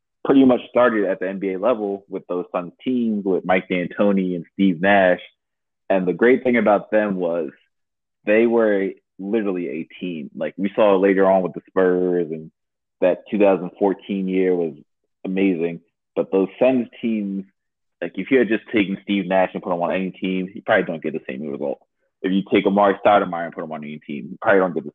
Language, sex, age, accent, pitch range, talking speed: English, male, 20-39, American, 90-100 Hz, 205 wpm